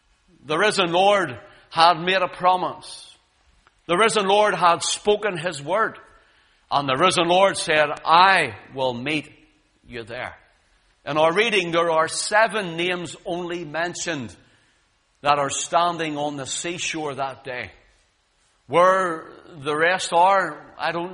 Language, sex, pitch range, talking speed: English, male, 165-225 Hz, 135 wpm